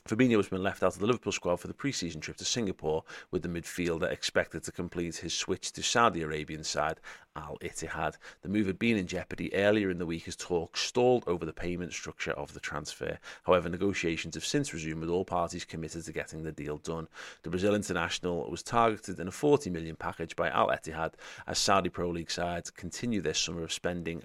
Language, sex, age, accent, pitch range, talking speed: English, male, 30-49, British, 85-100 Hz, 215 wpm